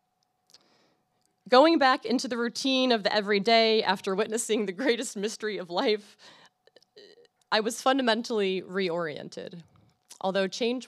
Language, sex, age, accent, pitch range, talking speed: English, female, 20-39, American, 165-220 Hz, 115 wpm